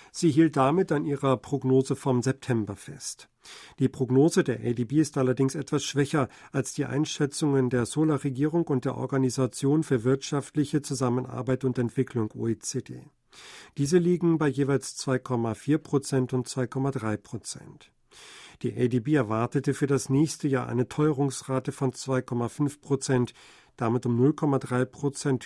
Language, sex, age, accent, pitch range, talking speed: German, male, 50-69, German, 125-145 Hz, 130 wpm